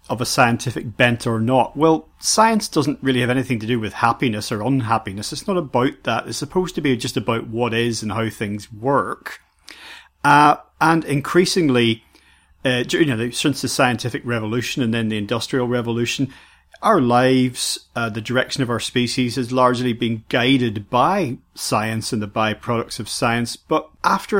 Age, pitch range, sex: 40-59, 115-140 Hz, male